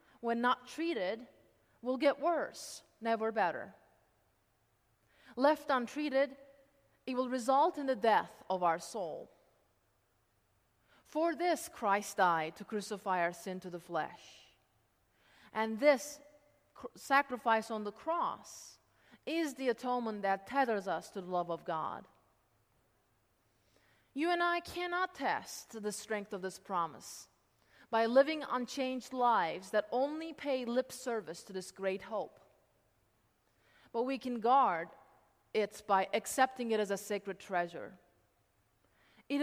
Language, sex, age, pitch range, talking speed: English, female, 30-49, 170-270 Hz, 130 wpm